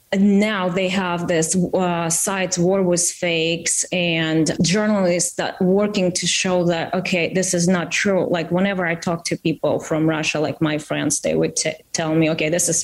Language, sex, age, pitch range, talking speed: English, female, 20-39, 170-210 Hz, 185 wpm